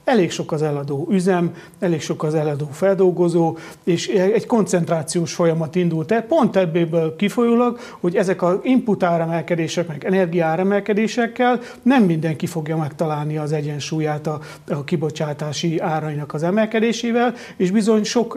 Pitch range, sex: 160-195 Hz, male